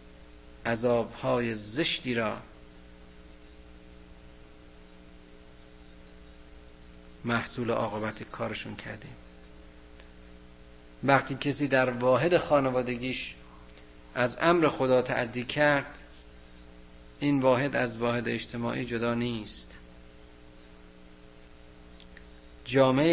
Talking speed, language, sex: 65 wpm, Persian, male